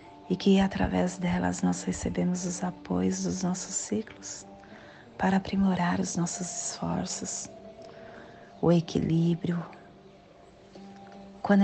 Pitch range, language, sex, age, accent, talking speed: 115-180 Hz, Portuguese, female, 30-49, Brazilian, 100 wpm